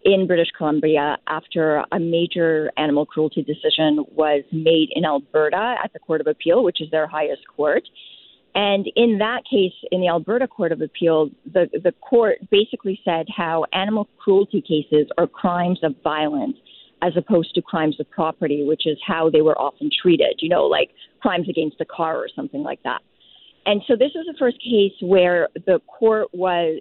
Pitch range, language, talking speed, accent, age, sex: 155-200 Hz, English, 180 wpm, American, 40-59, female